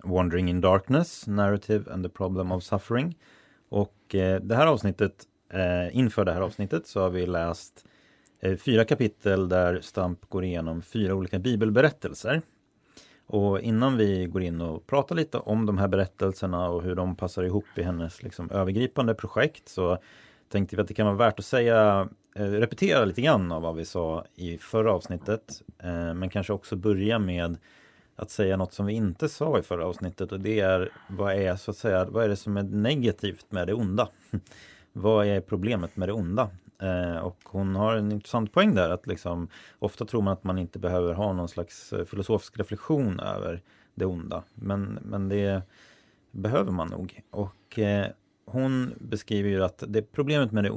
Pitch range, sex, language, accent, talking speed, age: 90-110 Hz, male, Swedish, native, 175 wpm, 30-49